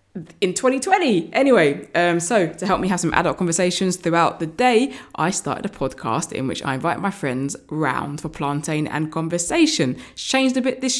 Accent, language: British, English